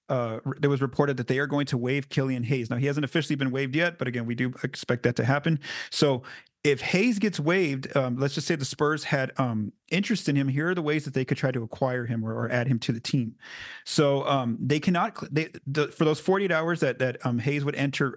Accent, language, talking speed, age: American, English, 255 wpm, 40-59